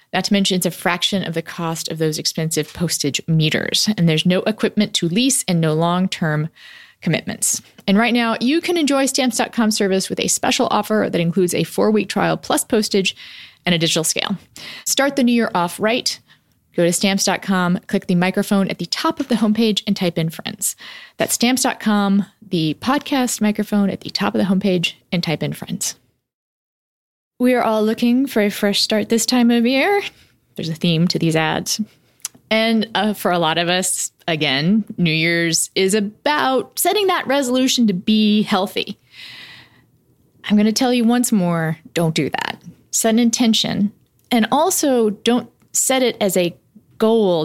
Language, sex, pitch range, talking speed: English, female, 170-225 Hz, 180 wpm